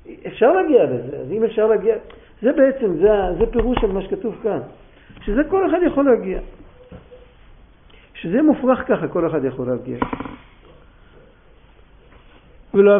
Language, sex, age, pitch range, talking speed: Hebrew, male, 50-69, 165-235 Hz, 135 wpm